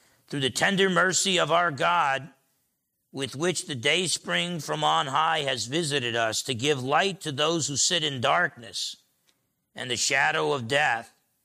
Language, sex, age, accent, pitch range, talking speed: English, male, 50-69, American, 115-140 Hz, 170 wpm